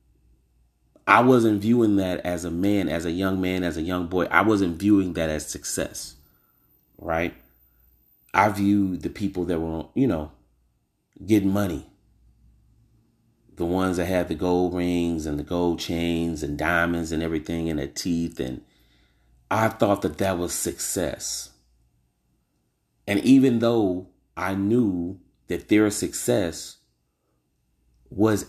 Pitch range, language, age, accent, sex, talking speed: 75-95 Hz, English, 30-49, American, male, 140 wpm